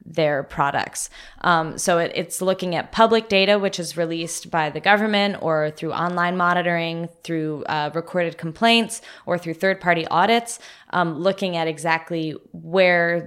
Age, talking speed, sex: 20-39, 150 wpm, female